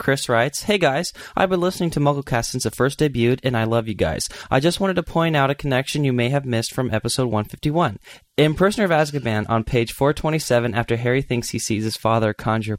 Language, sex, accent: English, male, American